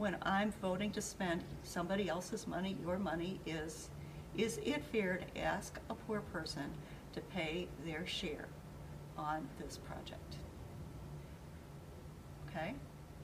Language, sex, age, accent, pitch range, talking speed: English, female, 50-69, American, 175-230 Hz, 120 wpm